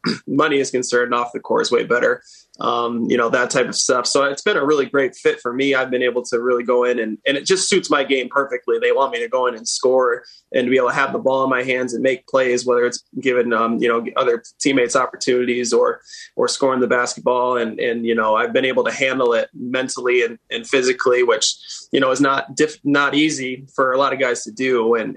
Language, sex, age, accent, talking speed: English, male, 20-39, American, 250 wpm